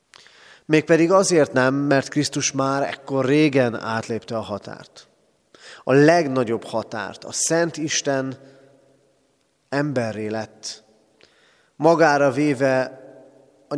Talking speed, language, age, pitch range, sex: 95 wpm, Hungarian, 30-49, 115-145 Hz, male